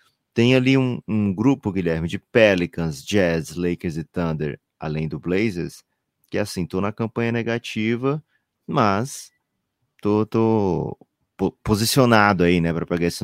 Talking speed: 135 wpm